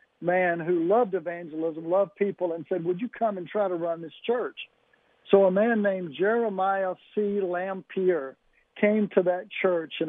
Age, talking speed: 60-79, 170 wpm